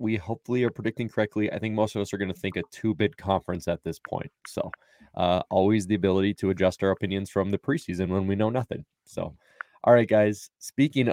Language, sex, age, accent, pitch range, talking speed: English, male, 20-39, American, 95-115 Hz, 220 wpm